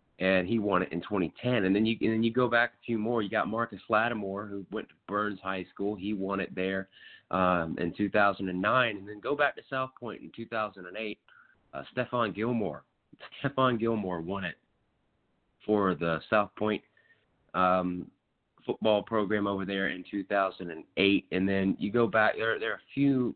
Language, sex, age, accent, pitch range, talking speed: English, male, 30-49, American, 85-110 Hz, 180 wpm